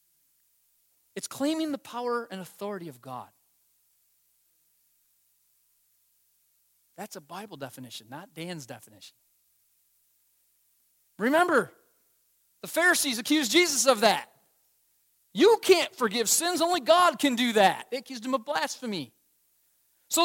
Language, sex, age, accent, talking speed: English, male, 40-59, American, 110 wpm